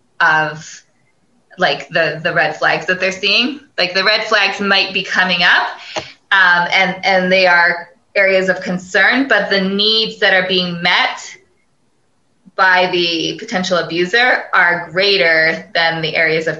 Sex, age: female, 20-39